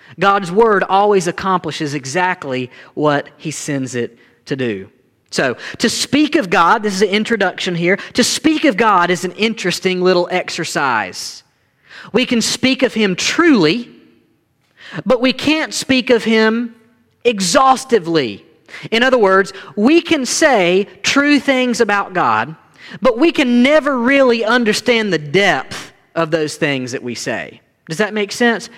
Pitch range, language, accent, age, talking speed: 165-240 Hz, English, American, 40-59, 150 wpm